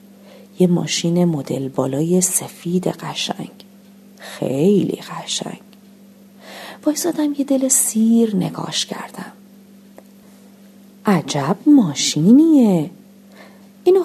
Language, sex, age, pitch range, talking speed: Persian, female, 40-59, 155-210 Hz, 75 wpm